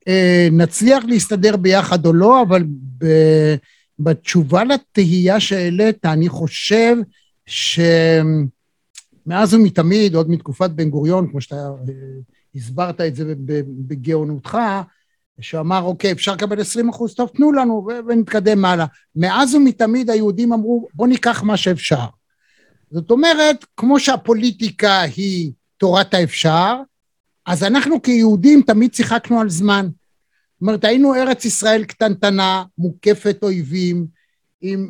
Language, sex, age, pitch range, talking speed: Hebrew, male, 60-79, 170-215 Hz, 120 wpm